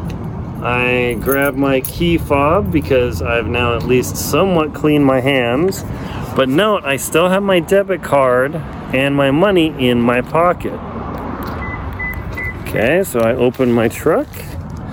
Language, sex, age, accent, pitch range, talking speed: English, male, 40-59, American, 115-170 Hz, 135 wpm